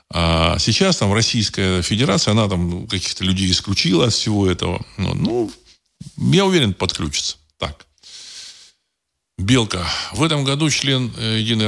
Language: Russian